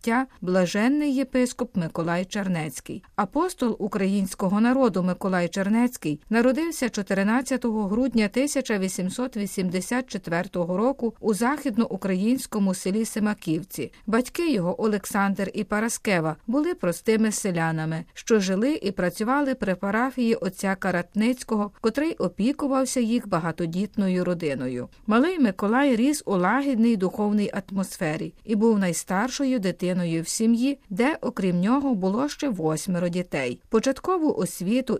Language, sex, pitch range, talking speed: Ukrainian, female, 185-245 Hz, 105 wpm